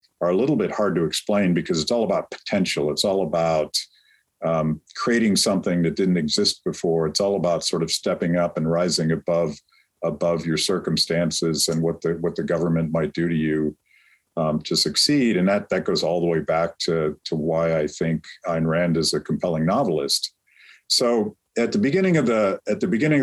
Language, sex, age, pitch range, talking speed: English, male, 50-69, 80-95 Hz, 195 wpm